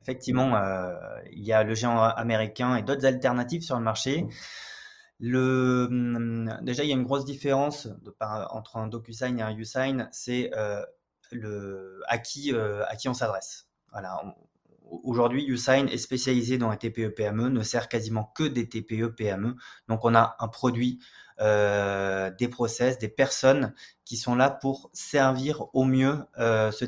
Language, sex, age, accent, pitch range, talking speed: French, male, 20-39, French, 110-130 Hz, 170 wpm